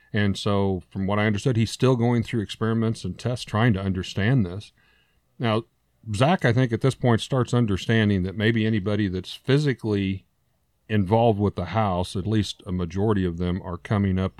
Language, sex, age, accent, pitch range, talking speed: English, male, 40-59, American, 100-125 Hz, 185 wpm